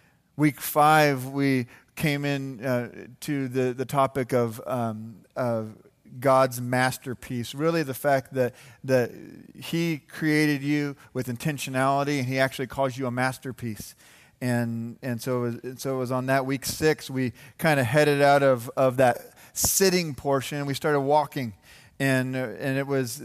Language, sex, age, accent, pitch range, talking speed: English, male, 40-59, American, 125-145 Hz, 165 wpm